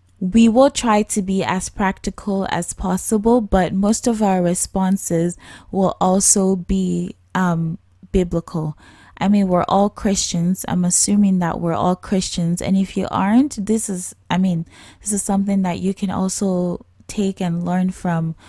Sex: female